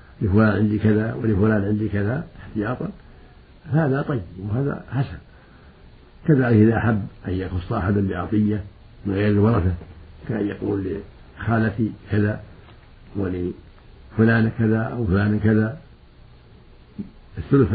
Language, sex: Arabic, male